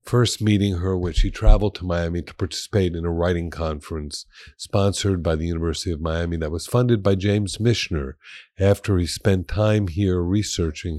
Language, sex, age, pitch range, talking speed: English, male, 50-69, 80-105 Hz, 175 wpm